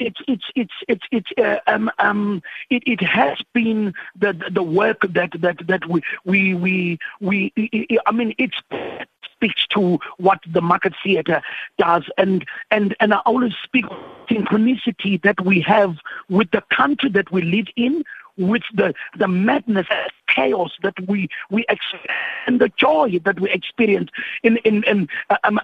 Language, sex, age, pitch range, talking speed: English, male, 50-69, 190-225 Hz, 160 wpm